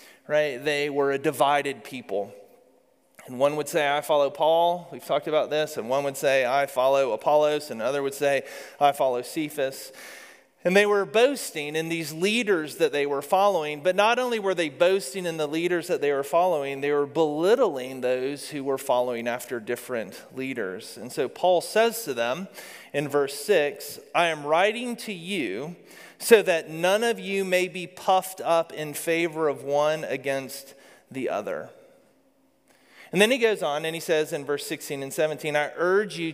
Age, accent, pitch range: 30-49, American, 140-175 Hz